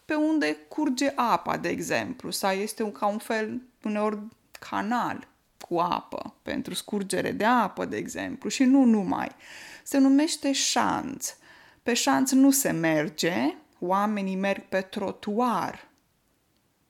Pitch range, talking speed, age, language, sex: 195-250 Hz, 130 wpm, 20-39, Romanian, female